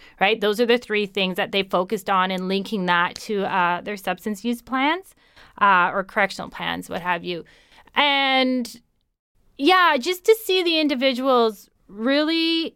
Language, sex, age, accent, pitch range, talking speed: English, female, 30-49, American, 210-255 Hz, 160 wpm